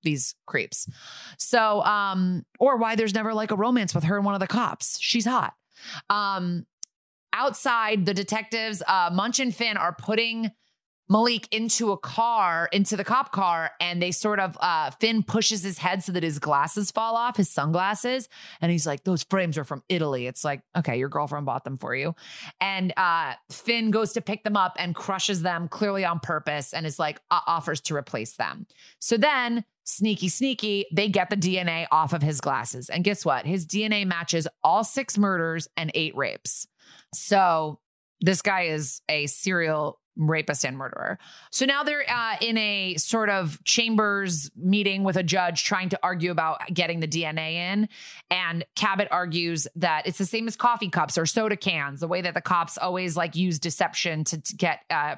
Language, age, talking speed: English, 30-49, 190 wpm